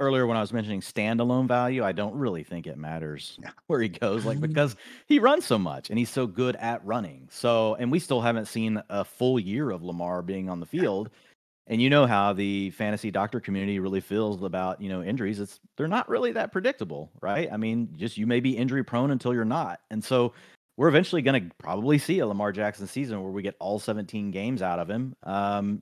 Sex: male